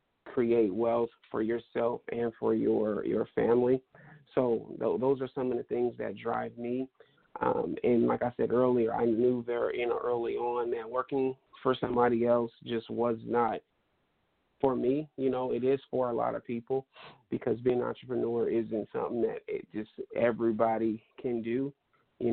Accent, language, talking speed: American, English, 175 wpm